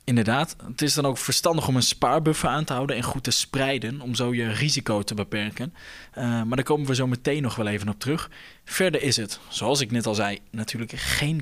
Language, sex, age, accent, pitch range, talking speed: Dutch, male, 20-39, Dutch, 125-155 Hz, 230 wpm